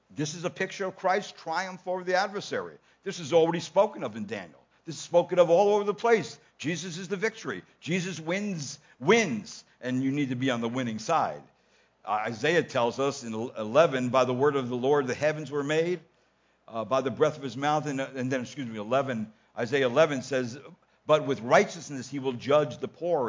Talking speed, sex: 210 wpm, male